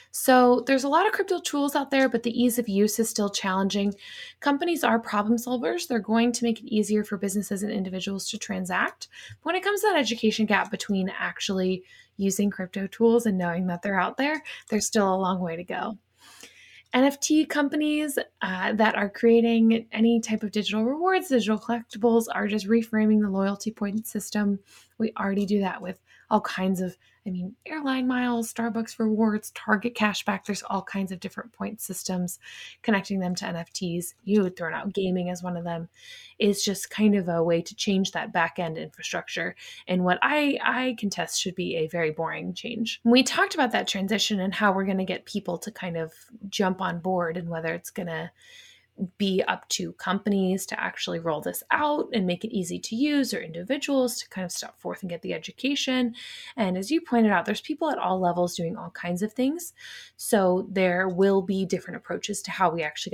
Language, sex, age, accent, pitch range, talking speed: English, female, 20-39, American, 185-235 Hz, 200 wpm